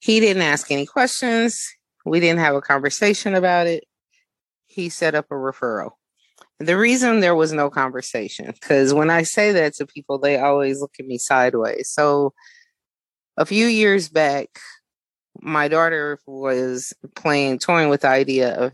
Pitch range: 130-175 Hz